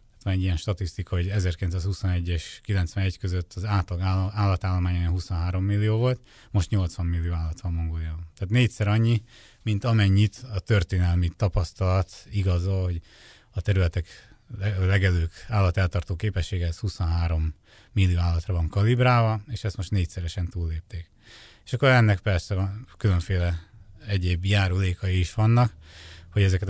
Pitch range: 90-105 Hz